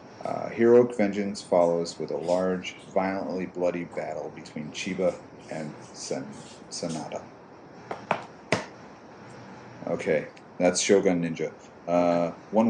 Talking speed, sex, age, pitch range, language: 95 wpm, male, 40-59, 85-105 Hz, English